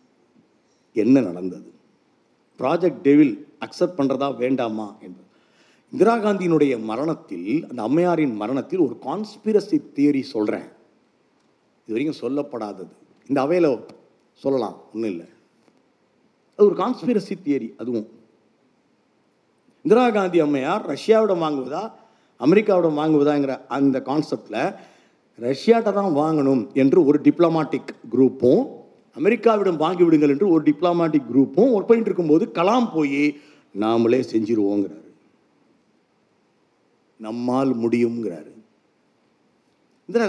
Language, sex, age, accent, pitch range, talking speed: Tamil, male, 50-69, native, 135-200 Hz, 95 wpm